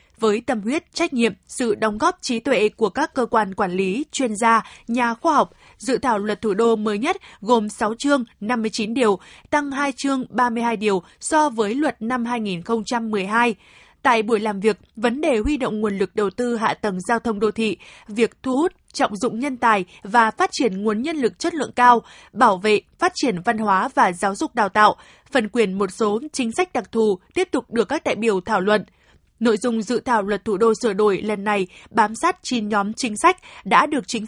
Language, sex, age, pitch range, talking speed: Vietnamese, female, 20-39, 215-270 Hz, 215 wpm